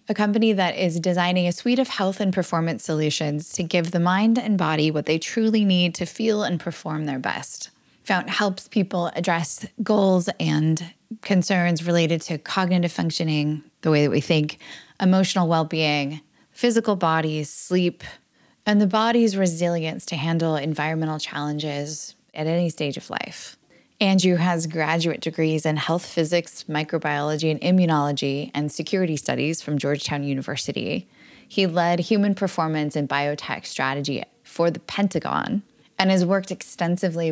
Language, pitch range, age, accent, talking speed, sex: English, 155-195 Hz, 10-29, American, 150 wpm, female